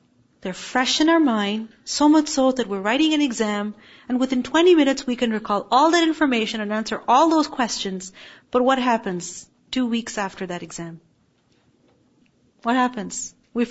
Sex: female